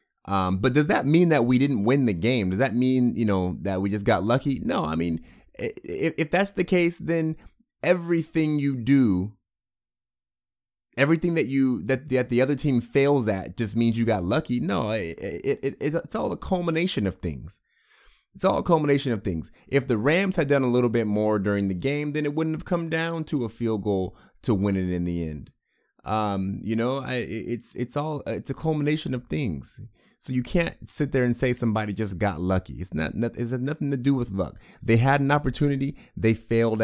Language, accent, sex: English, American, male